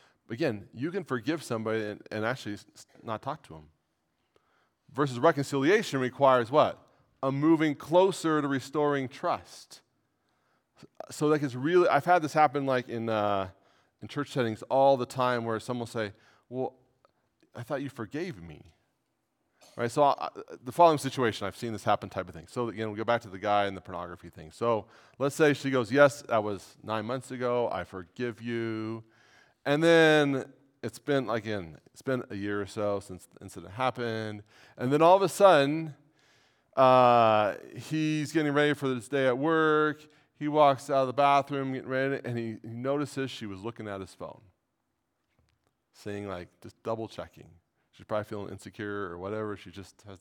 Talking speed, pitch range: 180 wpm, 105-145 Hz